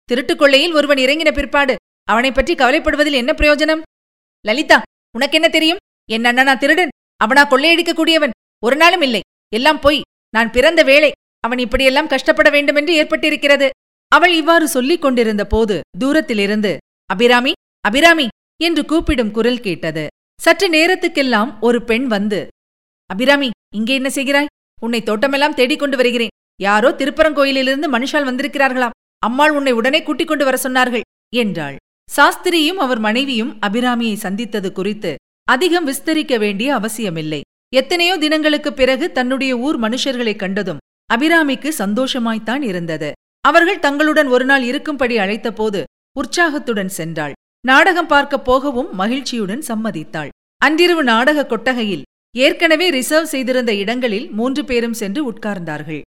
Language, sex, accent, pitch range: Tamil, female, native, 225-305 Hz